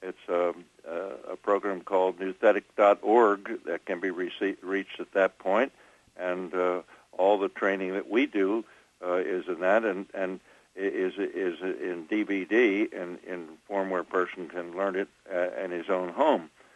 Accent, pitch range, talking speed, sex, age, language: American, 95-115 Hz, 160 wpm, male, 60-79, English